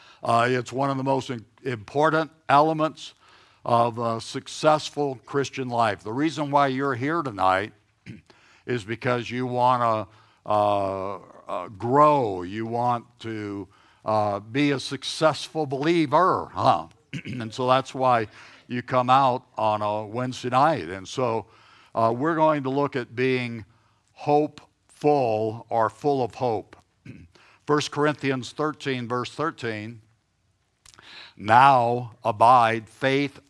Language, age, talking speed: English, 60-79, 120 wpm